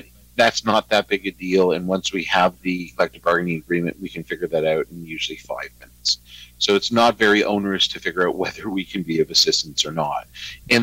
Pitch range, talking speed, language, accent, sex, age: 85-110 Hz, 220 wpm, English, American, male, 50-69